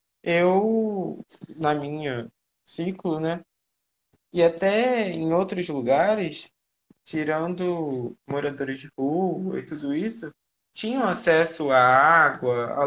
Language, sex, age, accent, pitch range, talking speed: Portuguese, male, 20-39, Brazilian, 140-185 Hz, 105 wpm